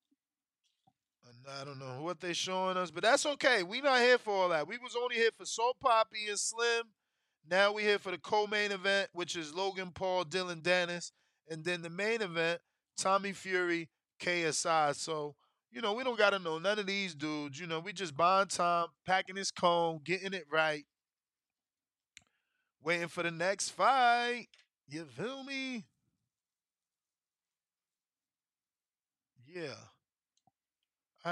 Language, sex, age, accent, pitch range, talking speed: English, male, 20-39, American, 170-230 Hz, 155 wpm